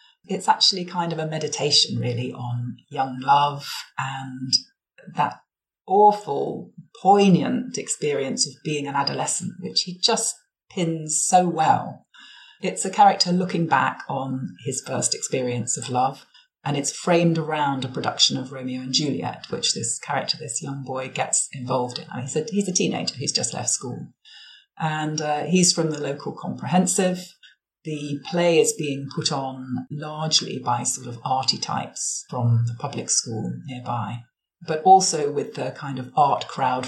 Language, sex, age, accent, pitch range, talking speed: English, female, 40-59, British, 130-190 Hz, 160 wpm